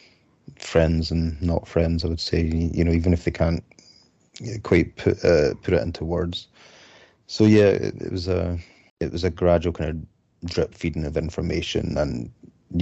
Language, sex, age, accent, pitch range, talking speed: English, male, 30-49, British, 80-90 Hz, 175 wpm